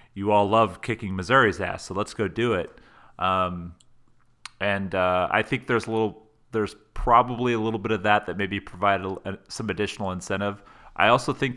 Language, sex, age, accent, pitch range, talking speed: English, male, 30-49, American, 90-110 Hz, 180 wpm